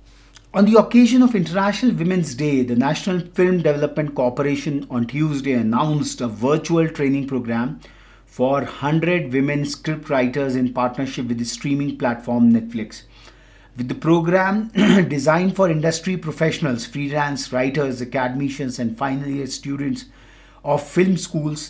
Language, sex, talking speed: English, male, 135 wpm